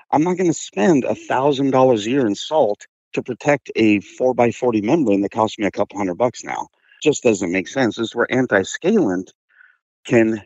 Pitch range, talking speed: 100-130 Hz, 185 wpm